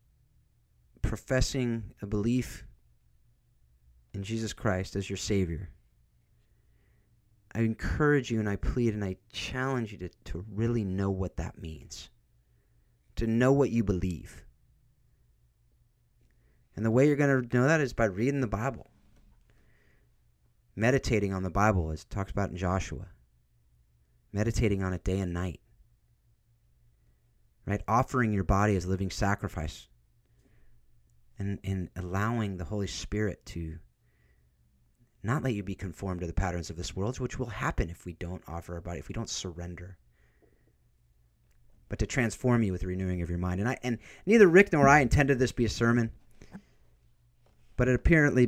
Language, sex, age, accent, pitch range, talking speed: English, male, 30-49, American, 80-120 Hz, 150 wpm